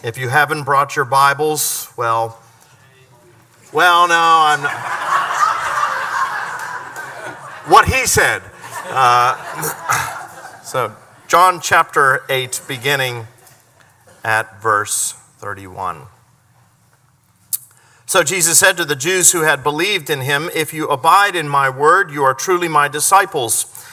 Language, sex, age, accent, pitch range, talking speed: English, male, 50-69, American, 120-165 Hz, 110 wpm